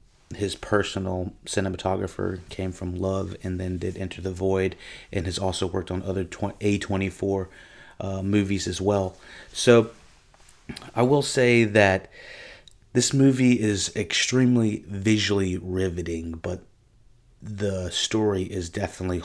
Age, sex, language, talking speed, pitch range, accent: 30-49, male, English, 120 wpm, 90-105 Hz, American